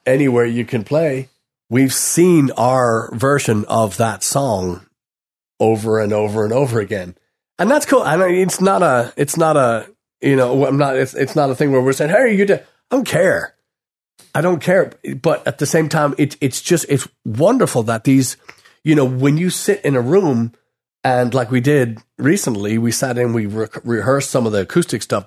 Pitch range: 115-140 Hz